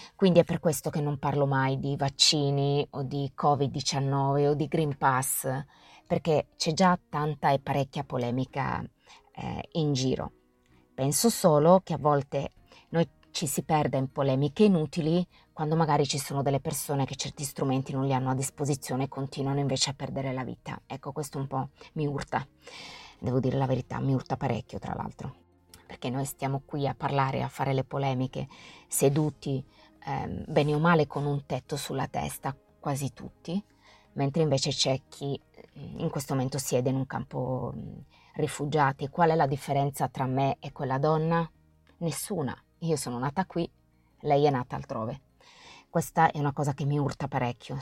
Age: 20-39